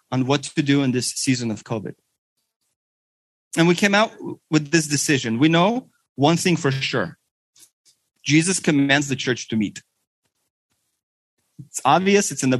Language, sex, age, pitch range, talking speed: English, male, 30-49, 145-200 Hz, 155 wpm